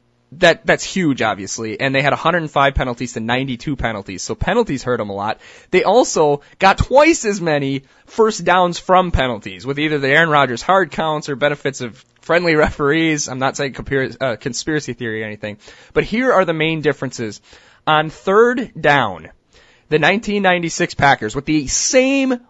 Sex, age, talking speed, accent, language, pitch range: male, 20-39, 170 wpm, American, English, 125-170 Hz